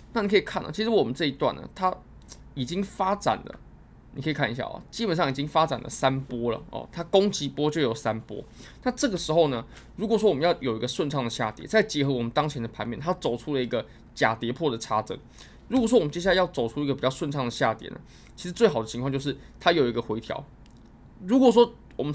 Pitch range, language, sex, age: 120-175 Hz, Chinese, male, 20-39